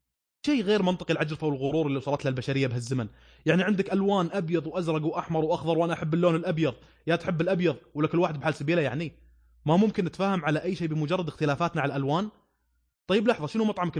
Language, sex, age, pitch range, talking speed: Arabic, male, 20-39, 145-195 Hz, 185 wpm